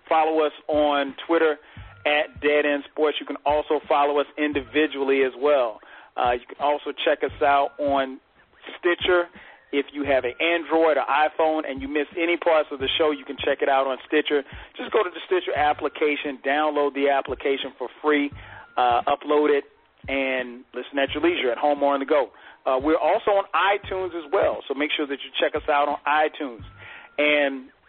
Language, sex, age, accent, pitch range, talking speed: English, male, 40-59, American, 145-180 Hz, 195 wpm